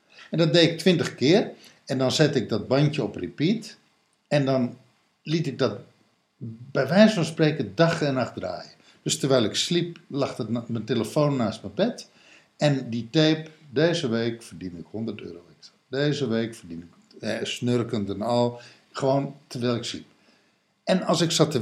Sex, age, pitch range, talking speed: male, 60-79, 110-155 Hz, 180 wpm